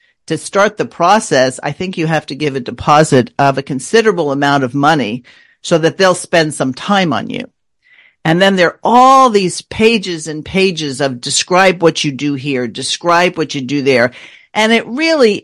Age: 50-69